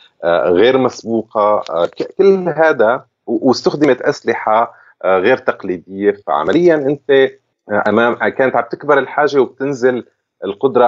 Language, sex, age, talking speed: Arabic, male, 30-49, 95 wpm